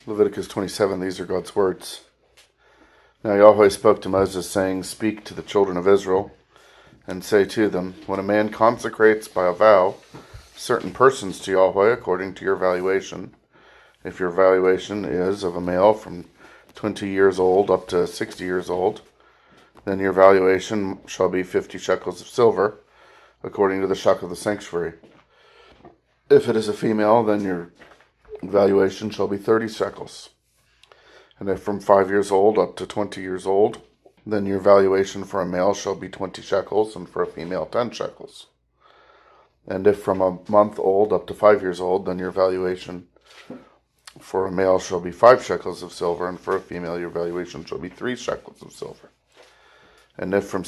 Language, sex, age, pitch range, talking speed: English, male, 40-59, 90-100 Hz, 175 wpm